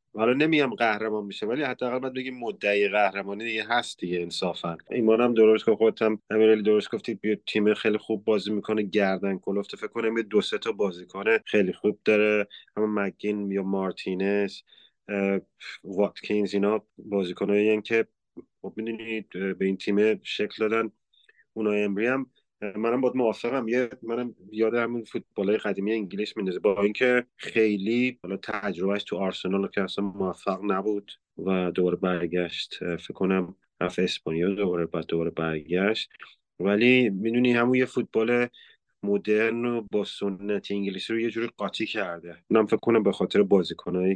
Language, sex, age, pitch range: Persian, male, 30-49, 95-115 Hz